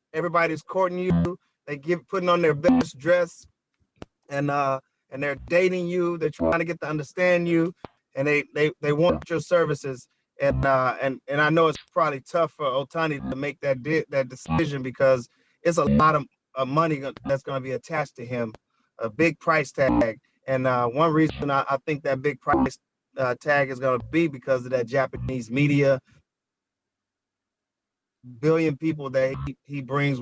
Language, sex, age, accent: English, male, 30-49, American